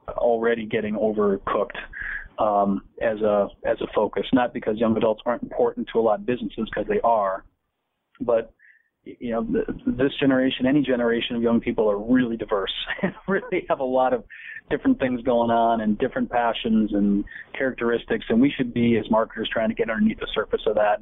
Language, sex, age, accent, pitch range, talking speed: English, male, 40-59, American, 105-125 Hz, 190 wpm